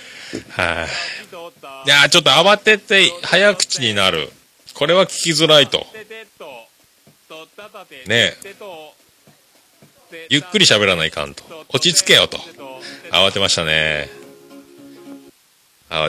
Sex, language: male, Japanese